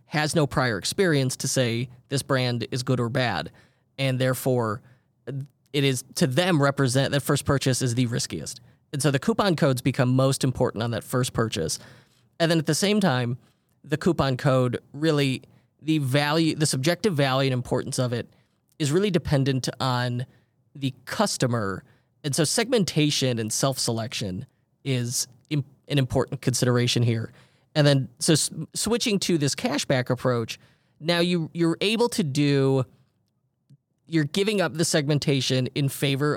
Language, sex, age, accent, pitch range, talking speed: English, male, 30-49, American, 125-155 Hz, 155 wpm